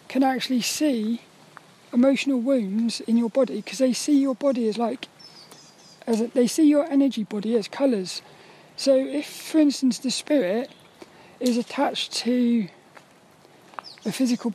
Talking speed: 145 wpm